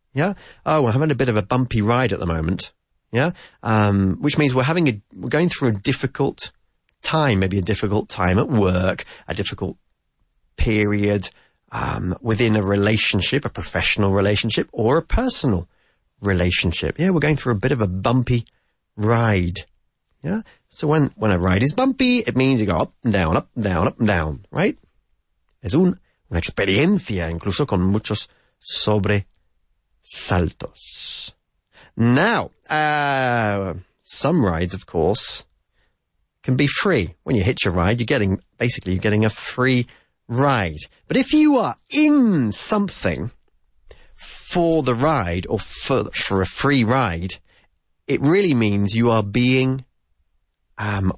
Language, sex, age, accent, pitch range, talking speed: English, male, 30-49, British, 95-135 Hz, 150 wpm